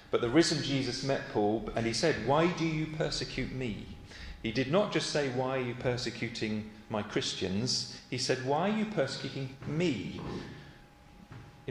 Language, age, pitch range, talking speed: English, 40-59, 110-145 Hz, 170 wpm